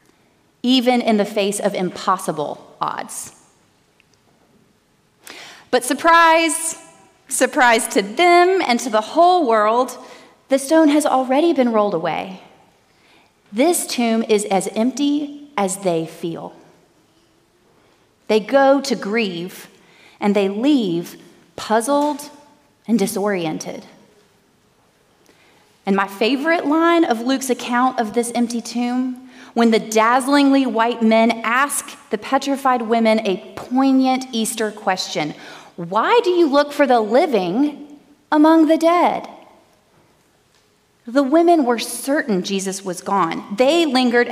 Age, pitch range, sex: 30-49, 205-275 Hz, female